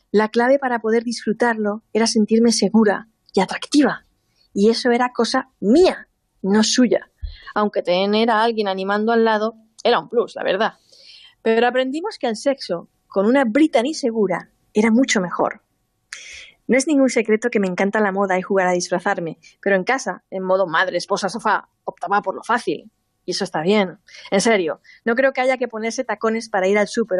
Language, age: Spanish, 20-39